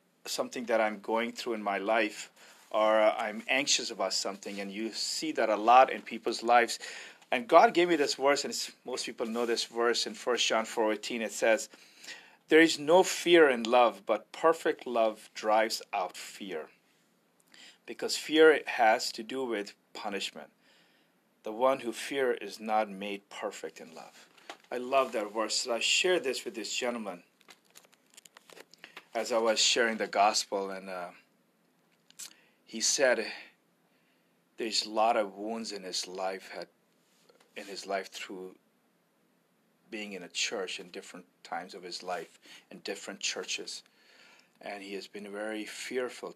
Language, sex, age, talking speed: English, male, 40-59, 160 wpm